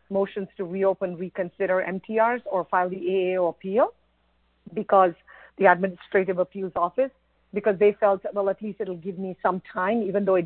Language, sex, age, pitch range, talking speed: English, female, 50-69, 180-205 Hz, 165 wpm